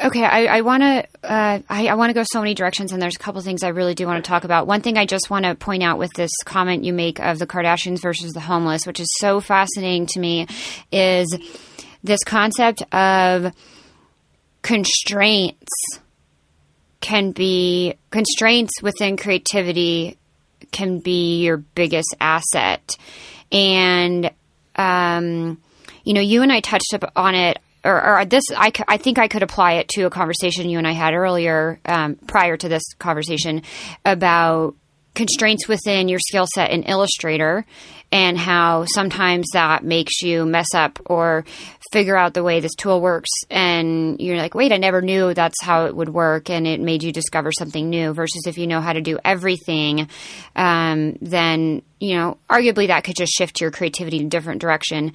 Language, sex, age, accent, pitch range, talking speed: English, female, 30-49, American, 165-195 Hz, 180 wpm